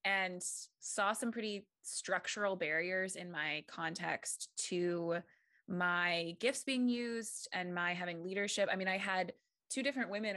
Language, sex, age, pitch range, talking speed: English, female, 20-39, 180-230 Hz, 145 wpm